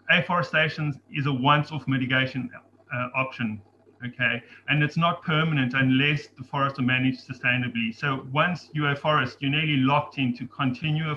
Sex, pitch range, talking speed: male, 130-150 Hz, 155 wpm